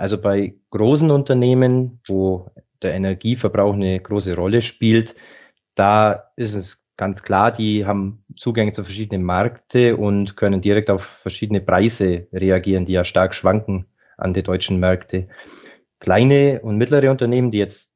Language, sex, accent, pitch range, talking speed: German, male, German, 100-120 Hz, 145 wpm